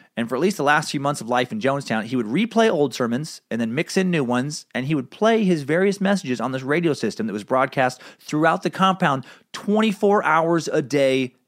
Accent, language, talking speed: American, English, 230 wpm